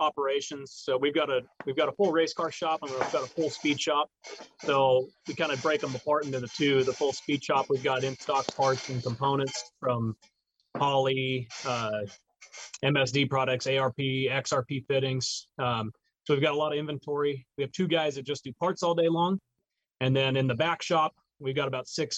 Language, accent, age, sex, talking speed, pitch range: English, American, 30-49, male, 210 wpm, 125-145 Hz